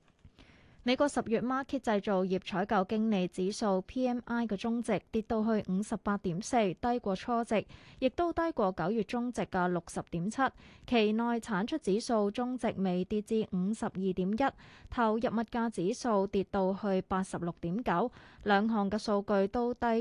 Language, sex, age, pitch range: Chinese, female, 20-39, 190-240 Hz